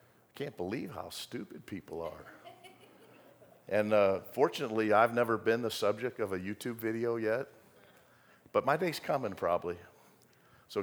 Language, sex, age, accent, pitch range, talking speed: English, male, 50-69, American, 95-115 Hz, 145 wpm